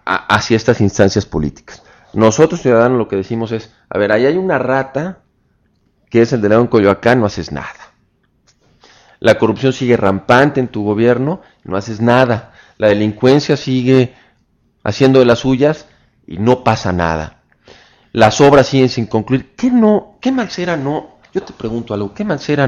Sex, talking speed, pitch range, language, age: male, 165 wpm, 105-140 Hz, English, 40-59